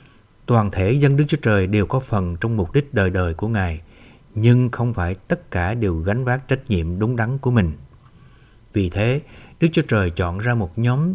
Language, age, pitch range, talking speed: Vietnamese, 60-79, 100-140 Hz, 210 wpm